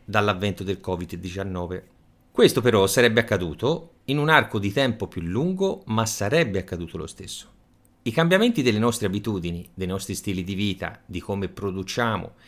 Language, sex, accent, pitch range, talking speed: Italian, male, native, 95-140 Hz, 155 wpm